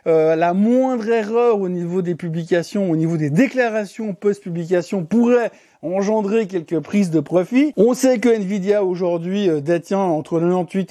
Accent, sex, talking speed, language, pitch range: French, male, 160 wpm, French, 175-220 Hz